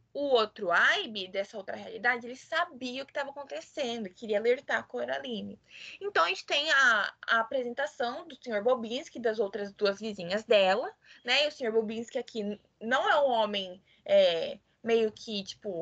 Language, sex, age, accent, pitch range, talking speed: Portuguese, female, 20-39, Brazilian, 205-295 Hz, 175 wpm